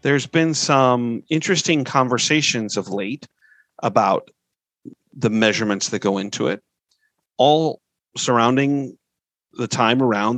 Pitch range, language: 115-150 Hz, English